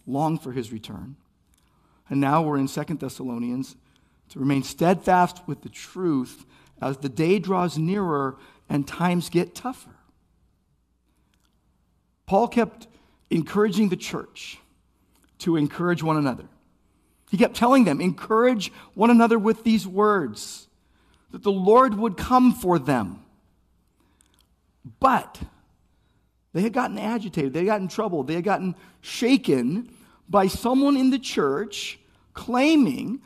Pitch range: 140-225 Hz